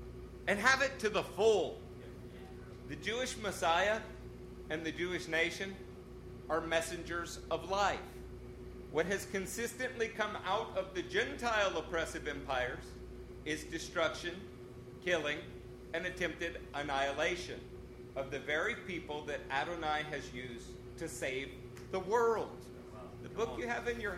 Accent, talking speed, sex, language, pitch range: American, 125 wpm, male, English, 125-195 Hz